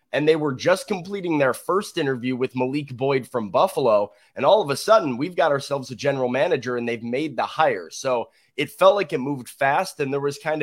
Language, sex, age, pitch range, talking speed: English, male, 20-39, 125-150 Hz, 225 wpm